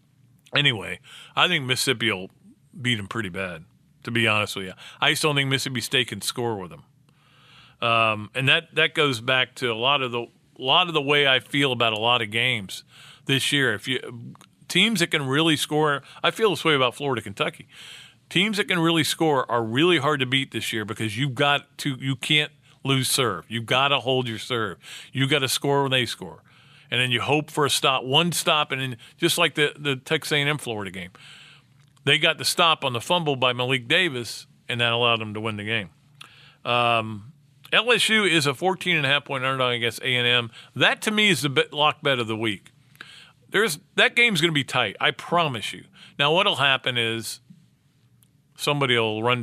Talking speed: 210 wpm